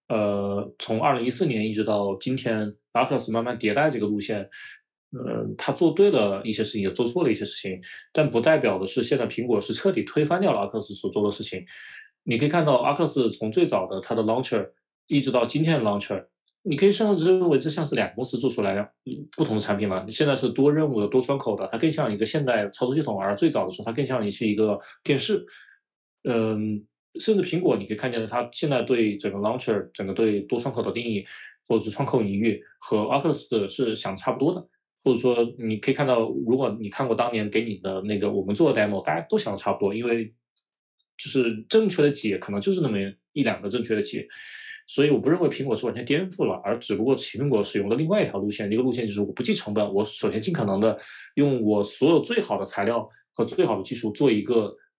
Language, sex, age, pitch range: Chinese, male, 20-39, 105-145 Hz